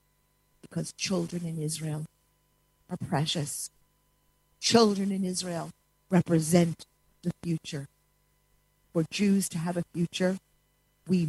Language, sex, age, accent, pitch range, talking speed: English, female, 50-69, American, 165-230 Hz, 100 wpm